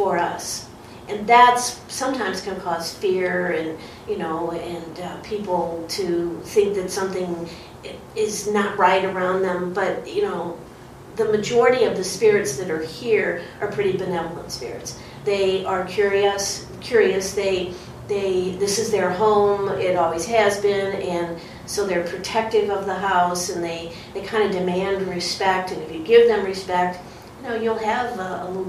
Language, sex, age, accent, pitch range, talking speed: English, female, 40-59, American, 180-220 Hz, 160 wpm